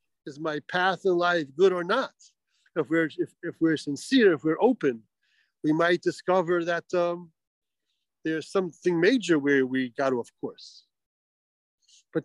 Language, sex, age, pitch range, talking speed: English, male, 50-69, 150-195 Hz, 155 wpm